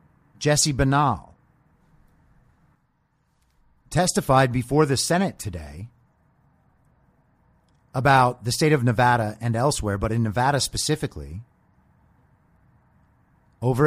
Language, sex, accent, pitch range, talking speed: English, male, American, 115-160 Hz, 80 wpm